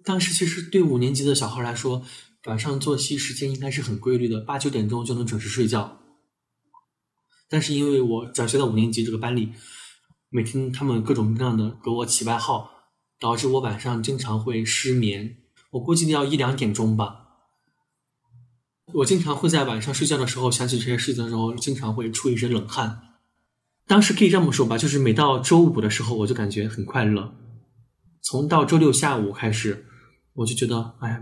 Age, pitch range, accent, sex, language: 20-39, 115-135 Hz, native, male, Chinese